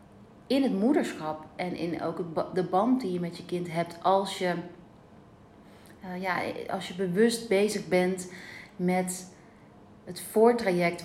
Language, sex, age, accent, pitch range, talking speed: Dutch, female, 30-49, Dutch, 170-195 Hz, 140 wpm